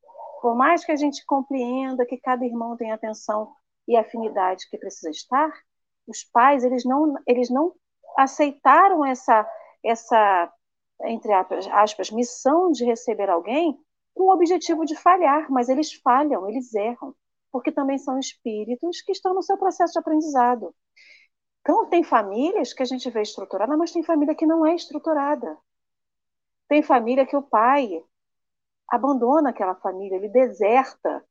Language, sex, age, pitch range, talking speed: Portuguese, female, 40-59, 235-320 Hz, 145 wpm